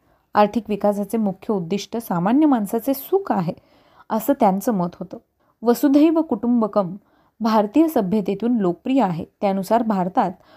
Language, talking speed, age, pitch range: Marathi, 115 wpm, 30-49, 200-245 Hz